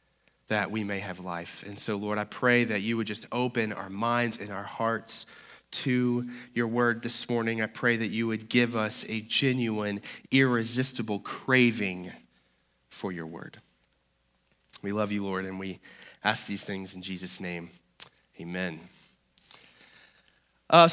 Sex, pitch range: male, 115-155 Hz